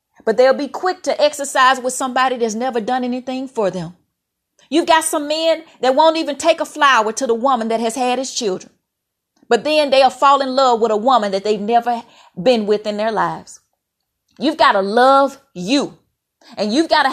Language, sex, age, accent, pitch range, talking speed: English, female, 30-49, American, 220-285 Hz, 205 wpm